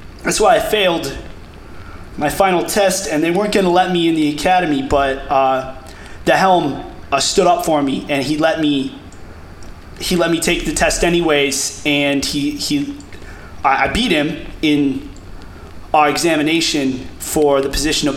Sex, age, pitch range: male, 20-39, 115-160 Hz